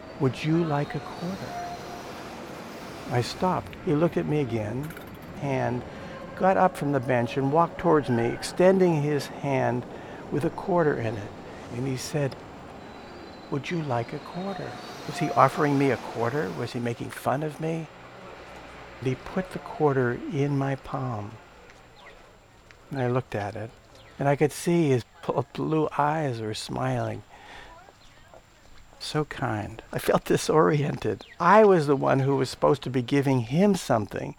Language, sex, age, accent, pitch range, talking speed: English, male, 60-79, American, 120-160 Hz, 155 wpm